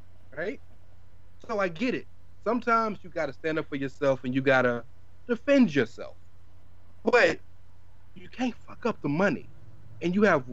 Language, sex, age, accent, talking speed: English, male, 30-49, American, 160 wpm